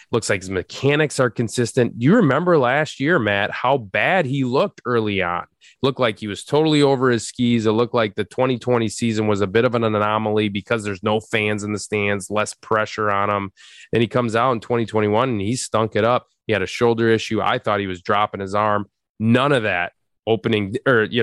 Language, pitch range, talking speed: English, 105-125 Hz, 220 wpm